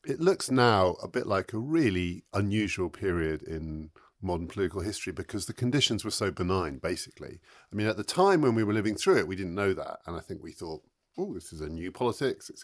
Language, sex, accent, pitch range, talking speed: English, male, British, 90-125 Hz, 230 wpm